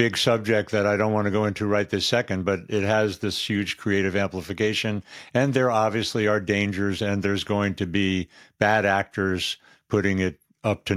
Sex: male